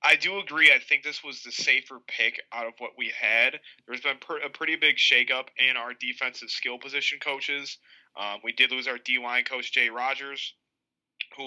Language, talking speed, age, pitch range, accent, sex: English, 200 wpm, 20-39, 120-140 Hz, American, male